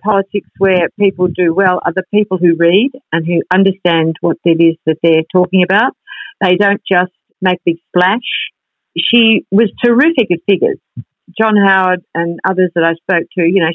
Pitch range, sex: 165-200 Hz, female